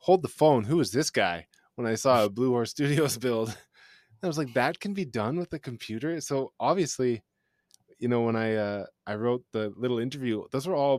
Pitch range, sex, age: 105-140 Hz, male, 20-39